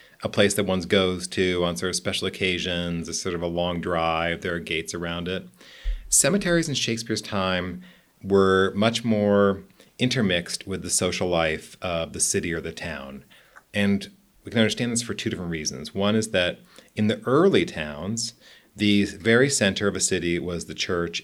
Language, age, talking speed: English, 40-59, 185 wpm